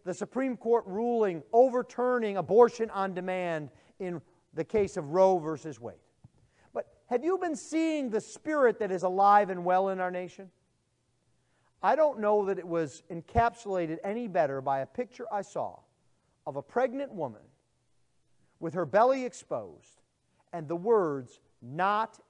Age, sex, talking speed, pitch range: 40-59, male, 150 wpm, 155-245 Hz